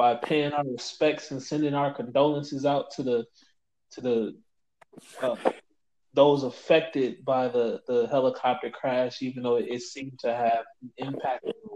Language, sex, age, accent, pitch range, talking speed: English, male, 20-39, American, 120-145 Hz, 150 wpm